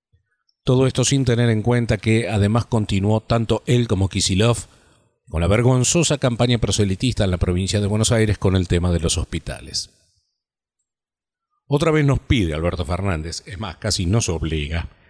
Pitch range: 90-115 Hz